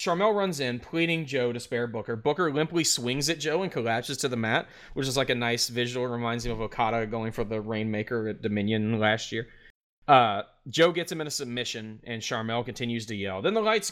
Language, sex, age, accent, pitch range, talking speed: English, male, 20-39, American, 115-175 Hz, 225 wpm